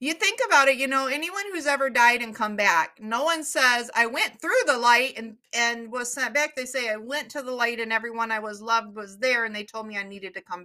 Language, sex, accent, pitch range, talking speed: English, female, American, 215-275 Hz, 270 wpm